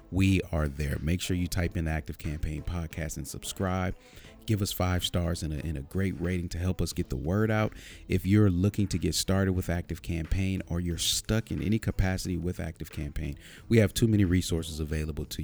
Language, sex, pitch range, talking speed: English, male, 80-100 Hz, 220 wpm